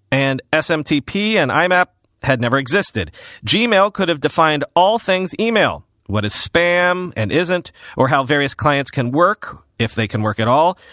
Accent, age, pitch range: American, 40-59, 130-180 Hz